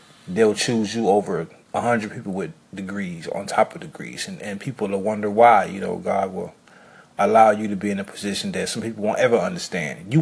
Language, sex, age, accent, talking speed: English, male, 30-49, American, 215 wpm